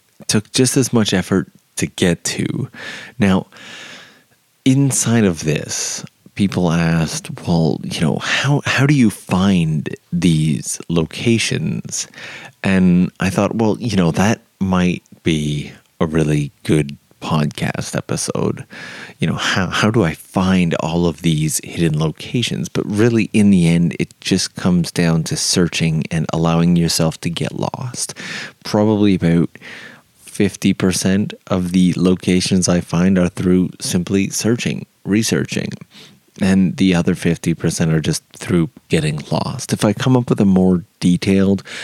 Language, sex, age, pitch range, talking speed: English, male, 30-49, 85-105 Hz, 140 wpm